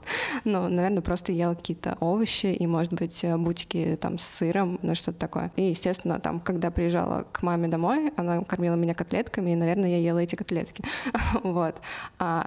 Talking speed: 175 wpm